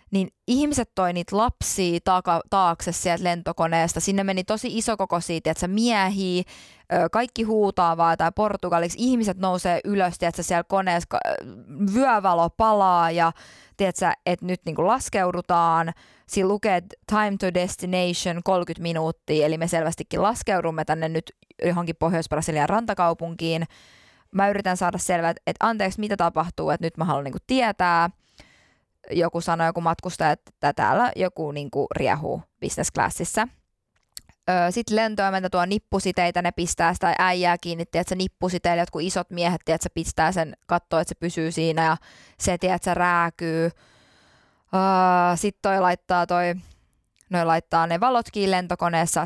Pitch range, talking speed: 165-190 Hz, 140 wpm